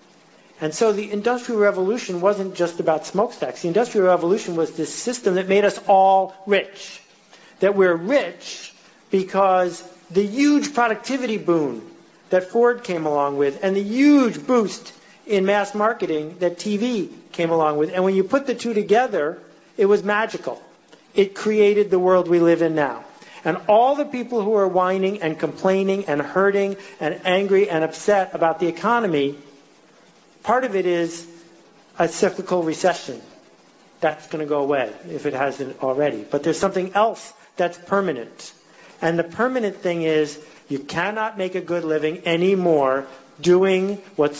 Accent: American